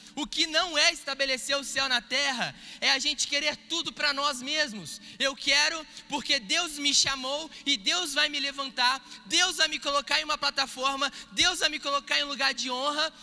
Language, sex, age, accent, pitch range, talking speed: Gujarati, male, 20-39, Brazilian, 245-285 Hz, 200 wpm